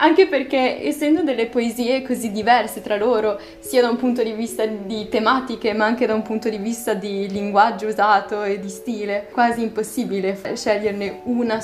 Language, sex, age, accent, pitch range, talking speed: Italian, female, 10-29, native, 190-225 Hz, 175 wpm